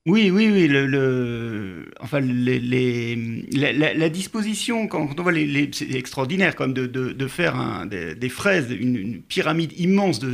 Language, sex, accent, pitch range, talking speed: French, male, French, 130-165 Hz, 195 wpm